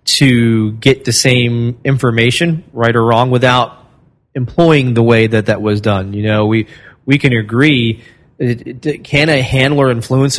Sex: male